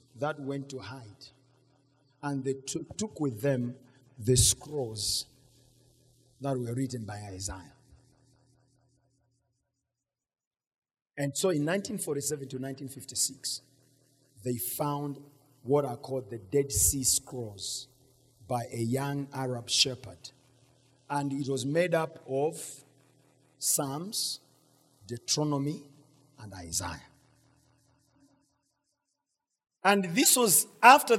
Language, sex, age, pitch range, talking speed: English, male, 50-69, 130-195 Hz, 95 wpm